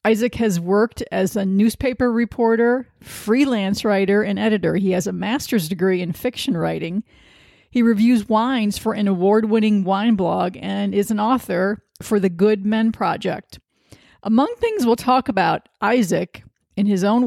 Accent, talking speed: American, 155 wpm